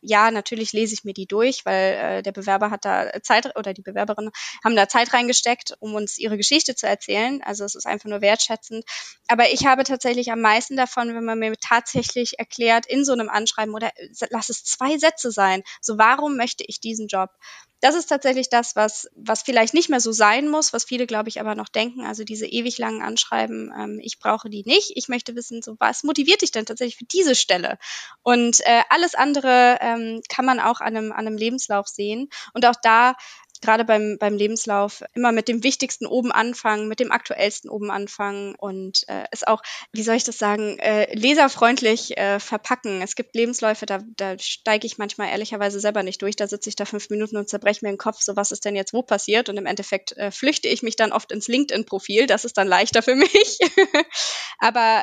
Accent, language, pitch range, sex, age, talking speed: German, German, 205-245 Hz, female, 20-39, 210 wpm